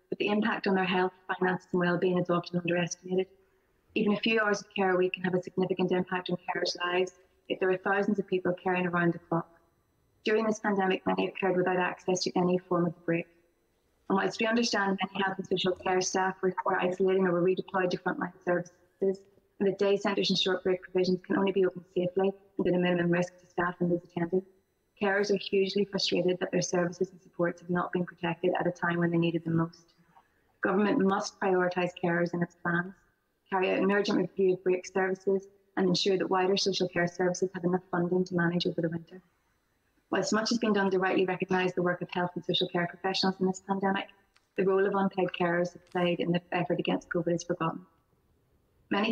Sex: female